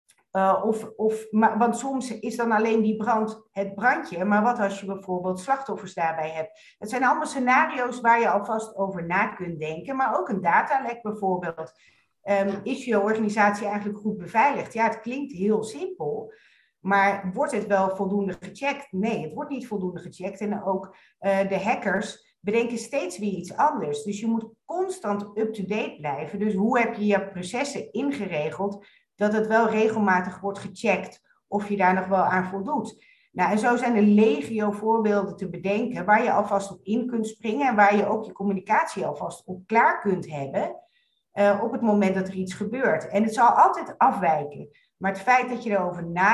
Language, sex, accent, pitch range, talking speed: Dutch, female, Dutch, 195-235 Hz, 185 wpm